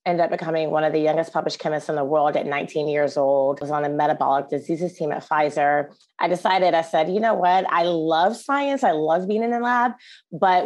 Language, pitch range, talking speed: English, 155-185 Hz, 235 wpm